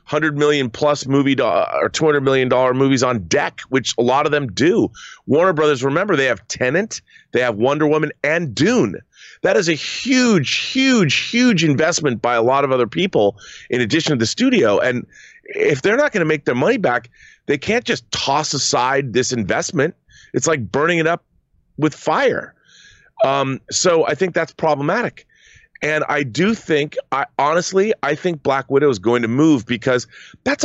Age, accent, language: 30-49, American, English